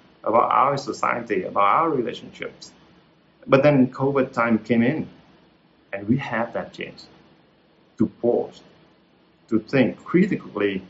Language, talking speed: Vietnamese, 120 wpm